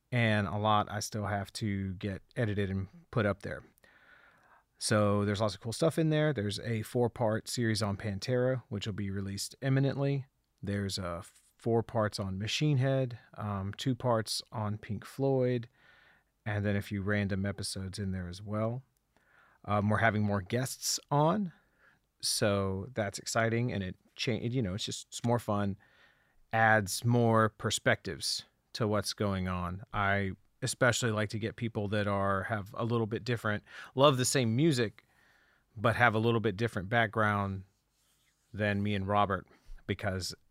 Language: English